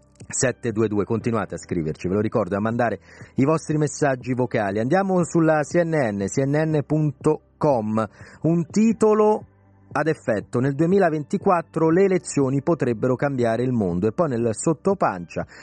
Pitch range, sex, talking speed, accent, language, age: 115-165 Hz, male, 130 wpm, native, Italian, 40-59